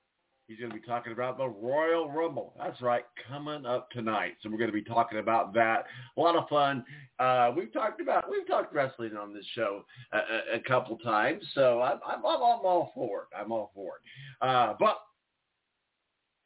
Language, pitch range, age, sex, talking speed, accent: English, 120-165 Hz, 50-69, male, 200 wpm, American